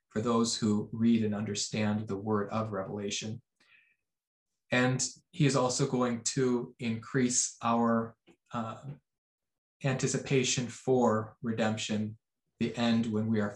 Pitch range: 110-125 Hz